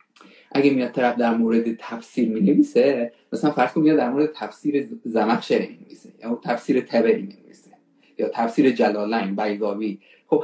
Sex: male